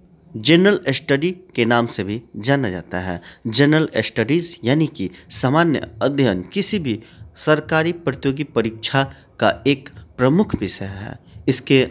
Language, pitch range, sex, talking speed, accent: Hindi, 100-140 Hz, male, 130 wpm, native